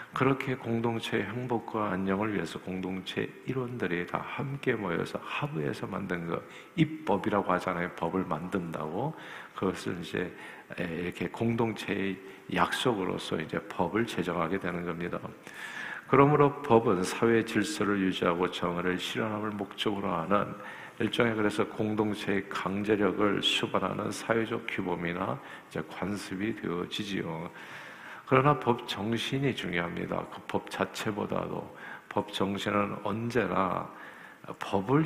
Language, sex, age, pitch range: Korean, male, 50-69, 95-120 Hz